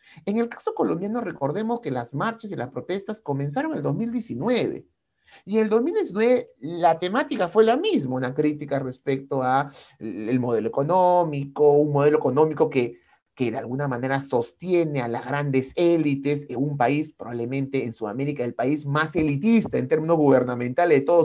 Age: 30-49